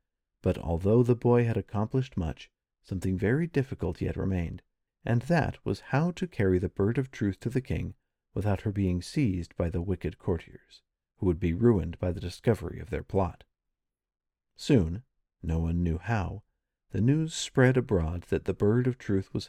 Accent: American